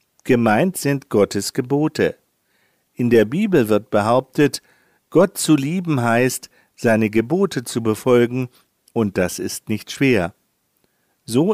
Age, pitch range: 50-69, 110-155 Hz